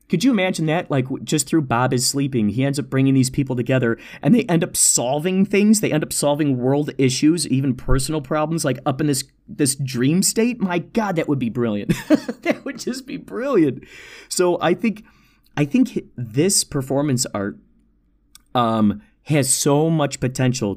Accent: American